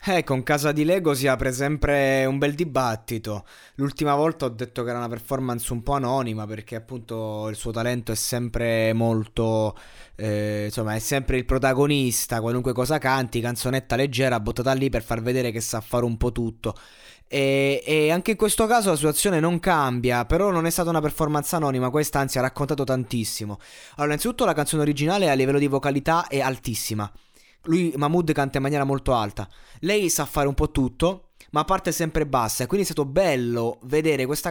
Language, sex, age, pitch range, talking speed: Italian, male, 20-39, 120-155 Hz, 190 wpm